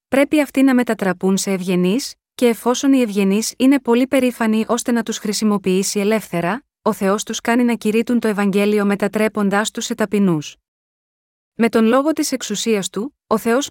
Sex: female